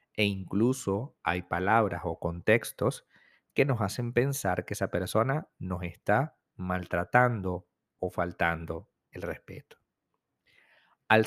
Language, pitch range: Spanish, 95-140 Hz